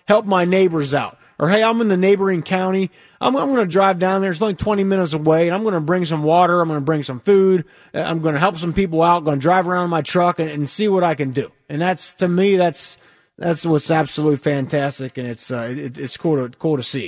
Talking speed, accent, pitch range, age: 275 wpm, American, 150-190 Hz, 30-49